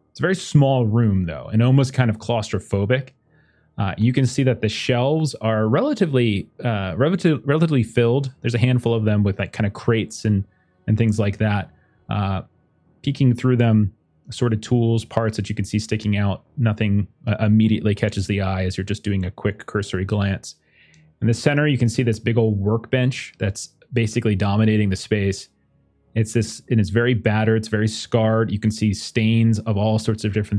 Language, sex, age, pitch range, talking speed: English, male, 30-49, 105-120 Hz, 195 wpm